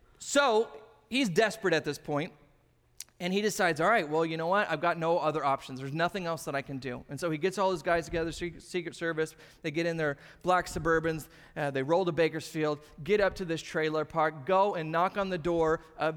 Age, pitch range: 30-49, 160-225 Hz